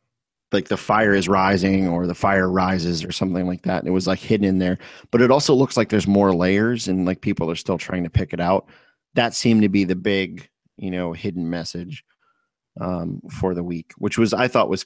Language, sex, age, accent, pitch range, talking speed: English, male, 30-49, American, 90-105 Hz, 230 wpm